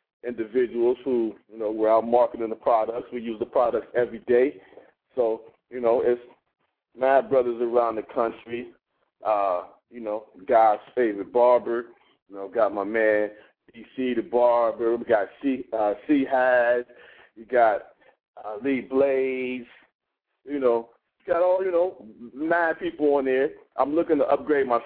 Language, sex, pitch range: English, male, 110-130 Hz